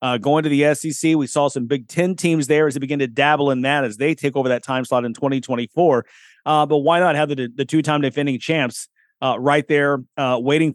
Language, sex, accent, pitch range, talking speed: English, male, American, 130-160 Hz, 240 wpm